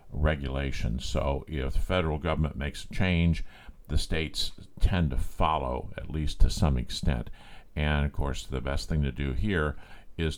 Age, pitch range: 50-69, 70-90 Hz